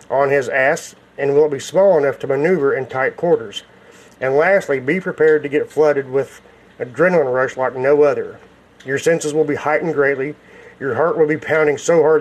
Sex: male